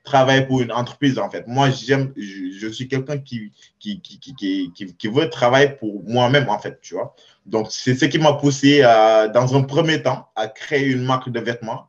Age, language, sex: 20-39, French, male